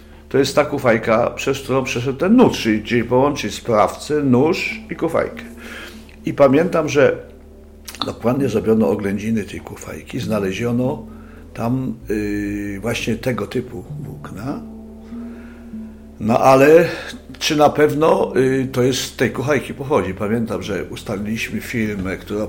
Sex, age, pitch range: male, 60-79, 100-140 Hz